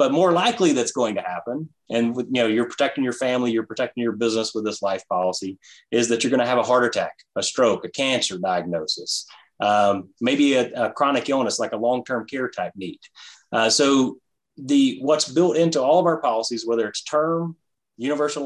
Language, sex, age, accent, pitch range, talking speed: English, male, 30-49, American, 110-145 Hz, 200 wpm